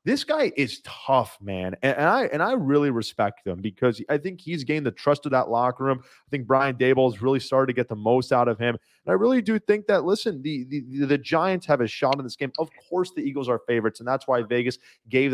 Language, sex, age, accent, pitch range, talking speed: English, male, 30-49, American, 125-150 Hz, 255 wpm